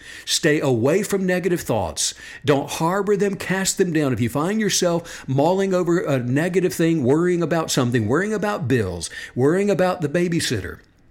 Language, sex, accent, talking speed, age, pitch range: English, male, American, 160 wpm, 60-79, 125-180 Hz